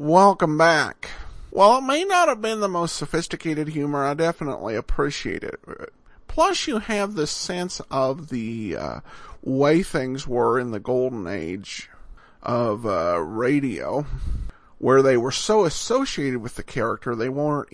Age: 50-69